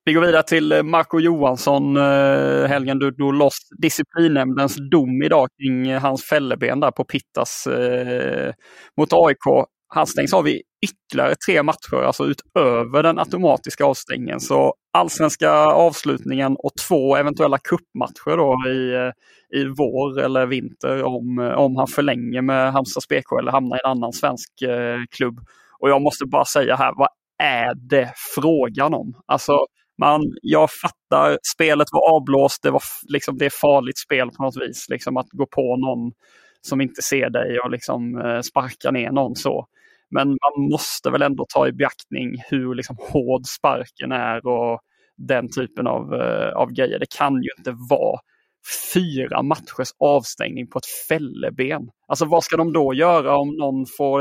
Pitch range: 125-145 Hz